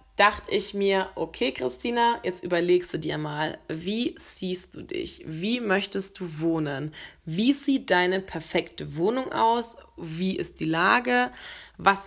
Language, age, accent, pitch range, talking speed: German, 20-39, German, 170-210 Hz, 145 wpm